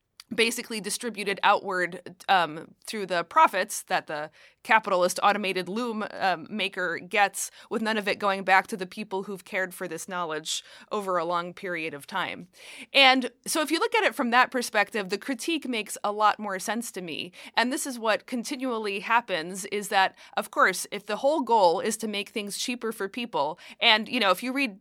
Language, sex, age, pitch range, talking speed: English, female, 30-49, 185-230 Hz, 195 wpm